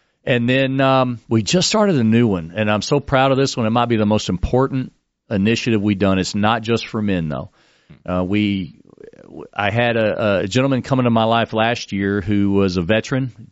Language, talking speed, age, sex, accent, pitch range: English, 215 wpm, 40-59, male, American, 100-120 Hz